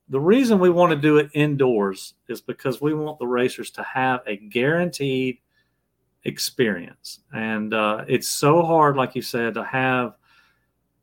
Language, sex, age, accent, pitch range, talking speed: English, male, 40-59, American, 125-150 Hz, 160 wpm